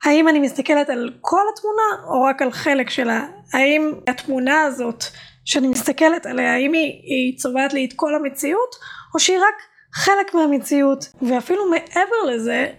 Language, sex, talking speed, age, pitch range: Hebrew, female, 155 wpm, 20-39, 265-340 Hz